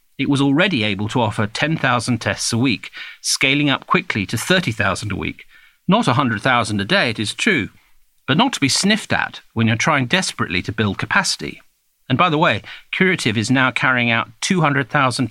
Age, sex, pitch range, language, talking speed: 50-69, male, 110-140 Hz, English, 185 wpm